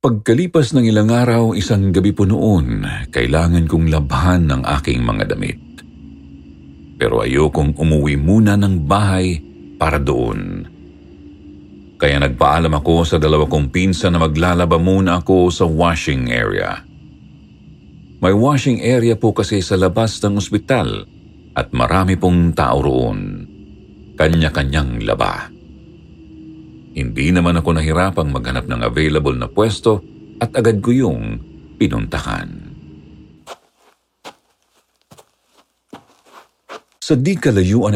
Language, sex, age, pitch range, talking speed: Filipino, male, 50-69, 75-100 Hz, 110 wpm